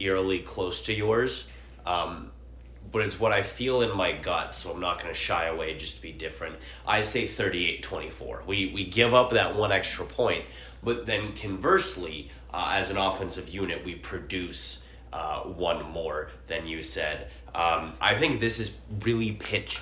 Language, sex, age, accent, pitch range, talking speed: English, male, 30-49, American, 65-95 Hz, 180 wpm